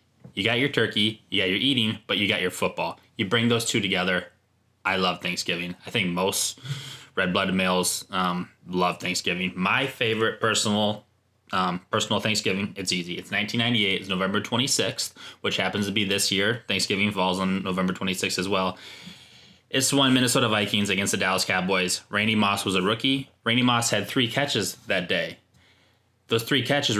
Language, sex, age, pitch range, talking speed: English, male, 20-39, 90-120 Hz, 175 wpm